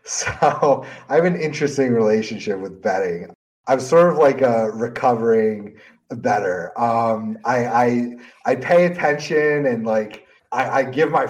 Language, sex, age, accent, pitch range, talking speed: English, male, 30-49, American, 115-145 Hz, 145 wpm